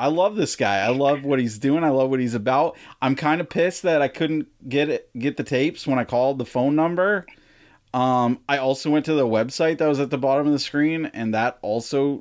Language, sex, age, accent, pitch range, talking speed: English, male, 30-49, American, 115-150 Hz, 245 wpm